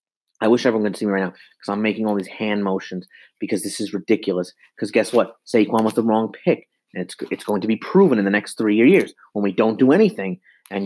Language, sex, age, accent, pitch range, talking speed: English, male, 30-49, American, 100-145 Hz, 250 wpm